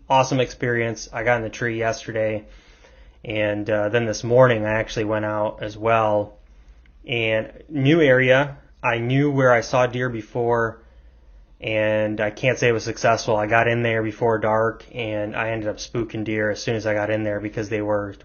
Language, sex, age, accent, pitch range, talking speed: English, male, 20-39, American, 105-125 Hz, 190 wpm